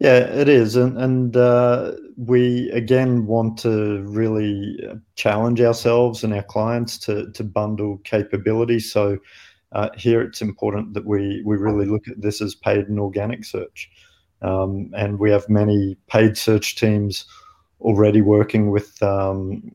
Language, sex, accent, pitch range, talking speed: English, male, Australian, 100-115 Hz, 150 wpm